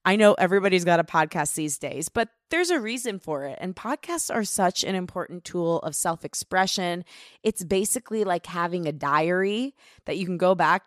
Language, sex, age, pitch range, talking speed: English, female, 20-39, 160-205 Hz, 190 wpm